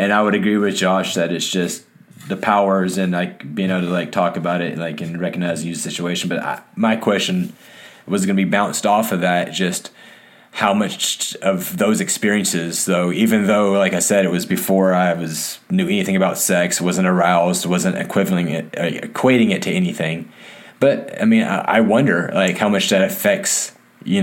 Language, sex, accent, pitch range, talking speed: English, male, American, 85-110 Hz, 195 wpm